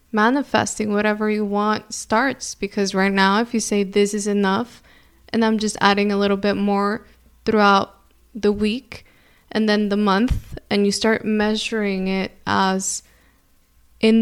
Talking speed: 150 wpm